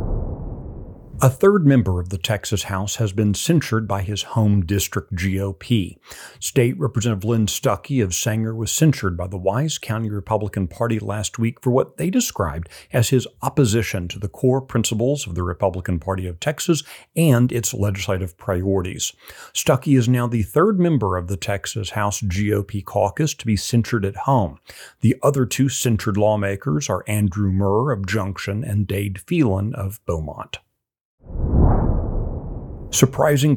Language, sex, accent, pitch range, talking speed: English, male, American, 100-130 Hz, 150 wpm